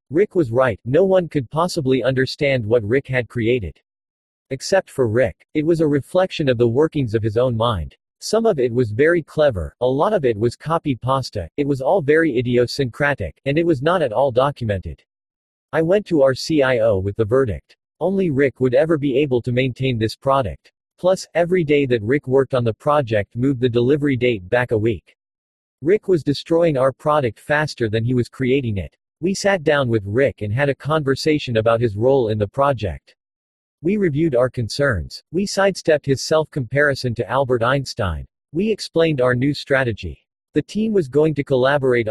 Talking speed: 190 wpm